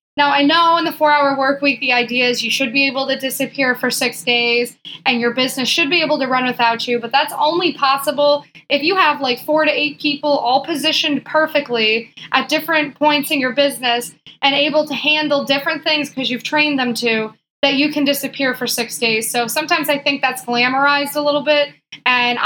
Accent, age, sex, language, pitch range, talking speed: American, 20-39, female, English, 235-290 Hz, 210 wpm